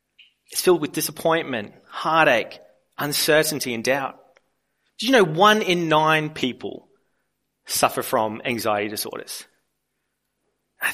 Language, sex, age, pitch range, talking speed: English, male, 30-49, 140-190 Hz, 110 wpm